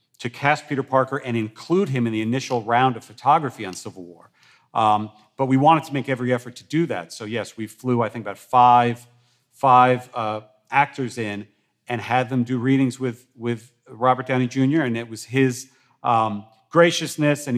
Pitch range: 115-140 Hz